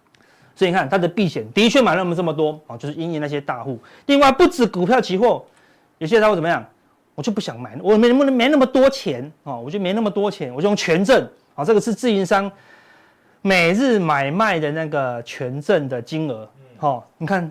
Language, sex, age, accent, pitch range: Chinese, male, 30-49, native, 155-230 Hz